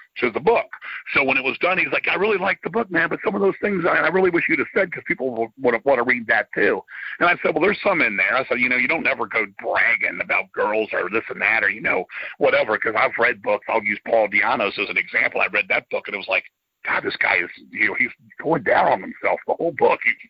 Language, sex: English, male